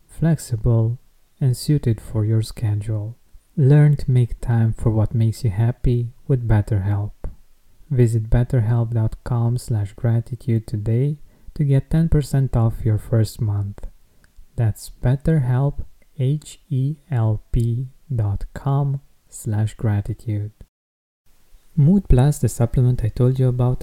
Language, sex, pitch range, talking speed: English, male, 115-135 Hz, 105 wpm